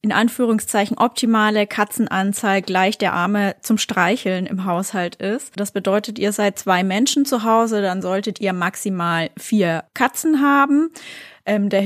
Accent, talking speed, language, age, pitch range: German, 140 wpm, German, 20-39, 190-225 Hz